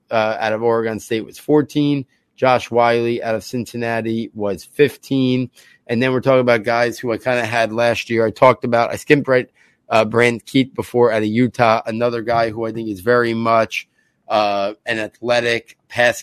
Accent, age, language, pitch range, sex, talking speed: American, 30-49, English, 110-120 Hz, male, 190 wpm